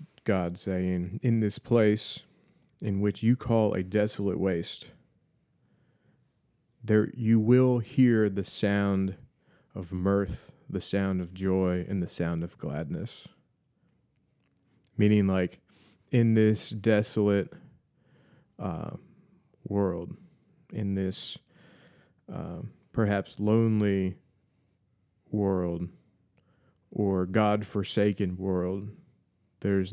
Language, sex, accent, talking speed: English, male, American, 90 wpm